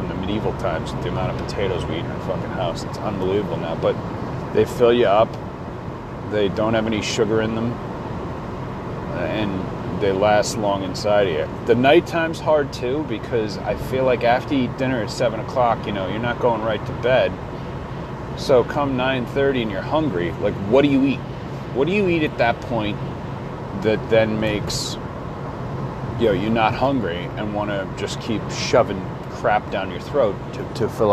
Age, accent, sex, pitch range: 30-49, American, male, 110-130 Hz